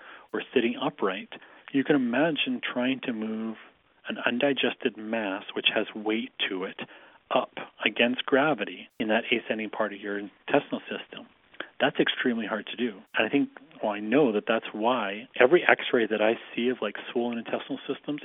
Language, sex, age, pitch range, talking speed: English, male, 40-59, 110-130 Hz, 170 wpm